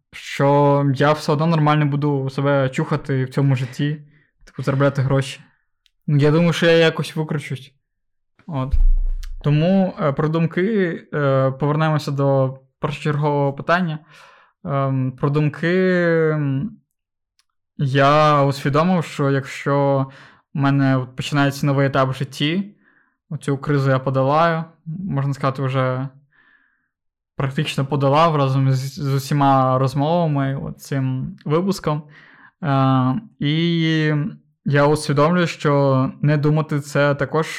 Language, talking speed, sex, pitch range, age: Ukrainian, 100 wpm, male, 135-155 Hz, 20-39